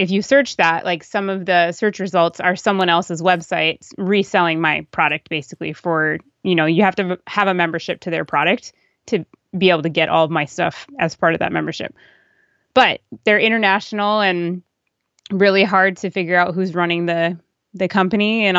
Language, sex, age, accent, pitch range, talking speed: English, female, 20-39, American, 170-200 Hz, 190 wpm